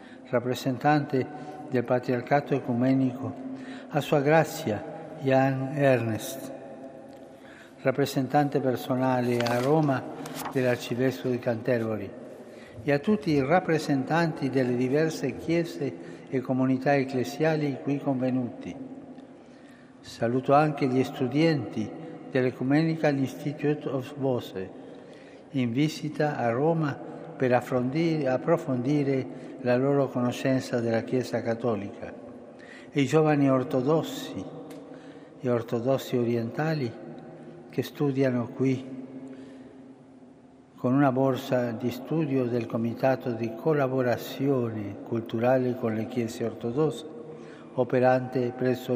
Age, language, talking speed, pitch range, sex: 60-79, Italian, 90 wpm, 125-145 Hz, male